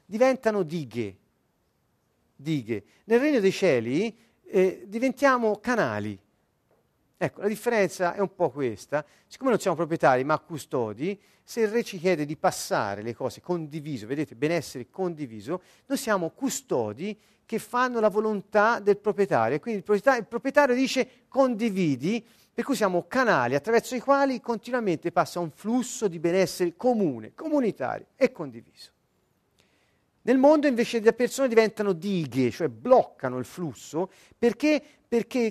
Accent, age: native, 40-59